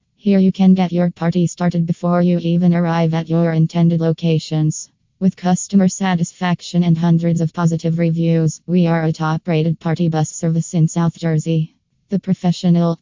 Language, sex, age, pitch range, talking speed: English, female, 20-39, 160-175 Hz, 160 wpm